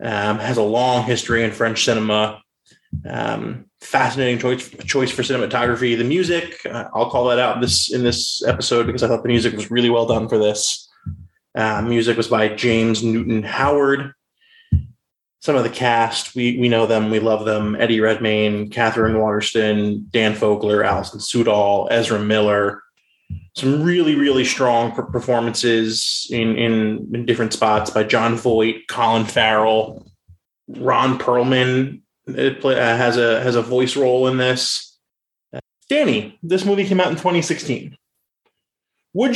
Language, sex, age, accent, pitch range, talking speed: English, male, 20-39, American, 110-130 Hz, 155 wpm